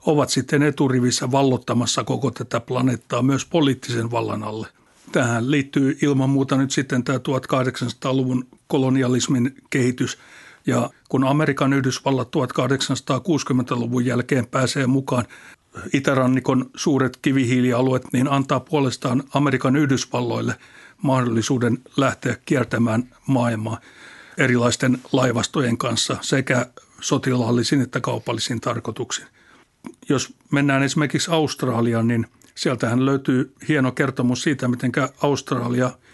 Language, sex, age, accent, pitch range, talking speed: Finnish, male, 60-79, native, 125-135 Hz, 100 wpm